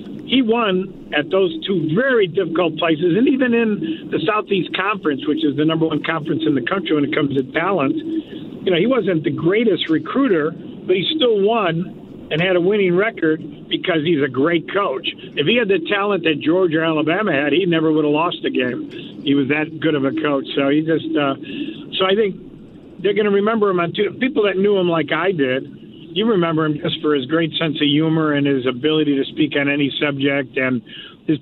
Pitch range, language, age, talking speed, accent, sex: 150-205 Hz, English, 50-69, 220 wpm, American, male